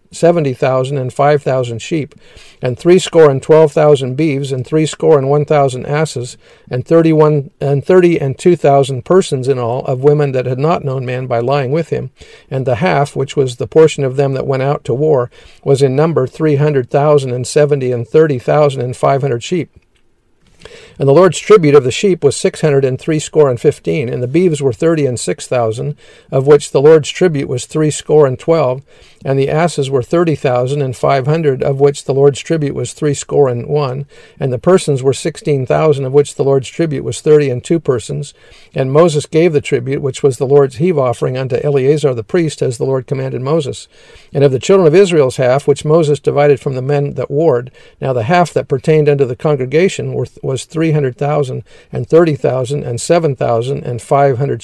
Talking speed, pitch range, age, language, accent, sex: 210 wpm, 130-155 Hz, 50-69, English, American, male